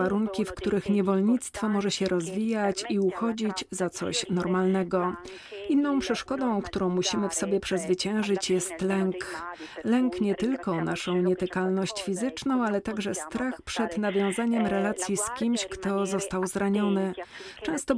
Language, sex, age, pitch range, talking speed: Polish, female, 40-59, 185-215 Hz, 130 wpm